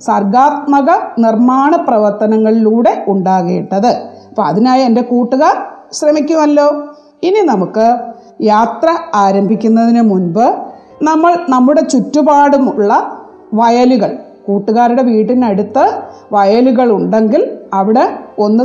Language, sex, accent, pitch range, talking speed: Malayalam, female, native, 215-295 Hz, 75 wpm